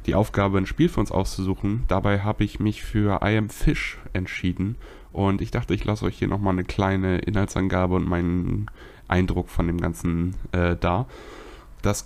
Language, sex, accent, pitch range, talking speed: German, male, German, 90-110 Hz, 180 wpm